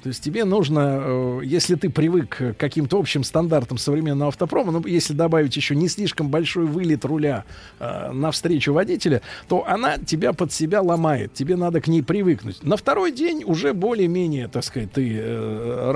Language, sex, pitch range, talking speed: Russian, male, 135-175 Hz, 170 wpm